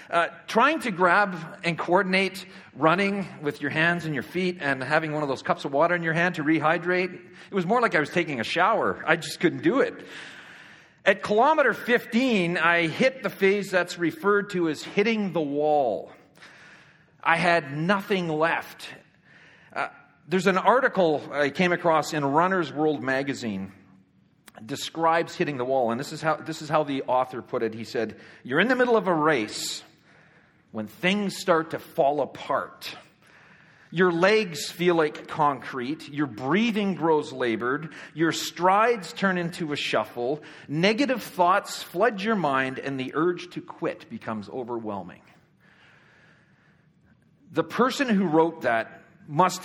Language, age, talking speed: English, 40-59, 160 wpm